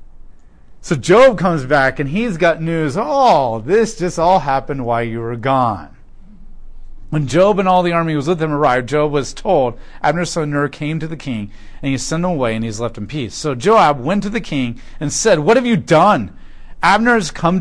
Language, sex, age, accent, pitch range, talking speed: English, male, 40-59, American, 130-190 Hz, 215 wpm